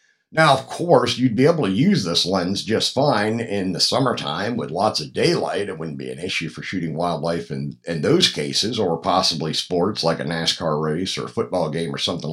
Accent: American